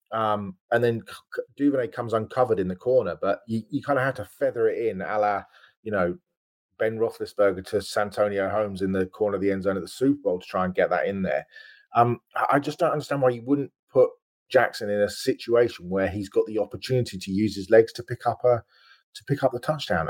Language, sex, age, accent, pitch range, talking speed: English, male, 30-49, British, 95-140 Hz, 230 wpm